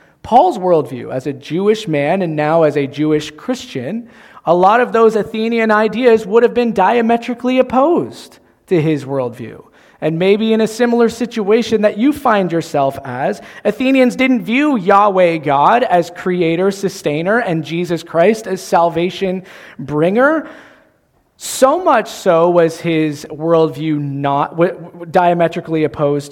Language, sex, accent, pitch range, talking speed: English, male, American, 165-240 Hz, 140 wpm